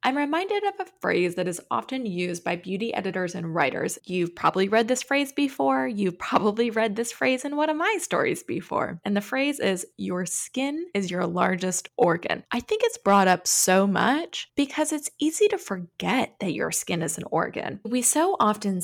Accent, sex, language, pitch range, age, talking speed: American, female, English, 185-265 Hz, 20-39, 200 wpm